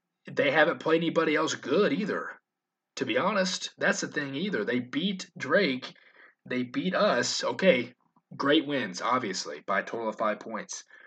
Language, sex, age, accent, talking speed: English, male, 20-39, American, 165 wpm